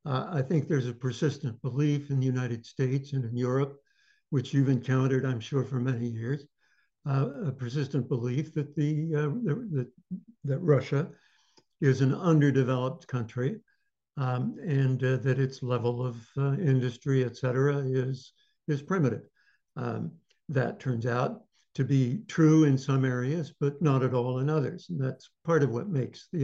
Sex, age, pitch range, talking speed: male, 70-89, 130-155 Hz, 160 wpm